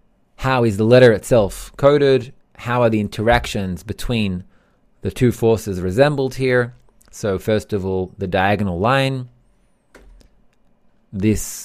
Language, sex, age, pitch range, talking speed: English, male, 20-39, 100-130 Hz, 125 wpm